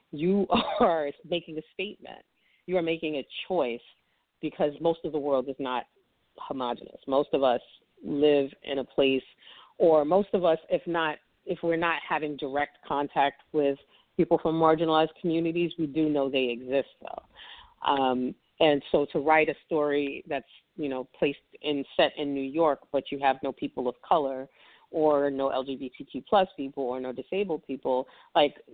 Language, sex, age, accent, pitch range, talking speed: English, female, 40-59, American, 135-170 Hz, 170 wpm